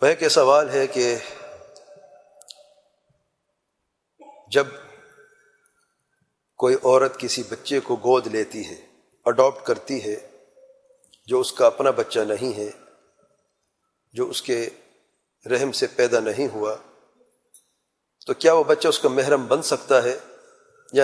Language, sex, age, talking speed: English, male, 40-59, 120 wpm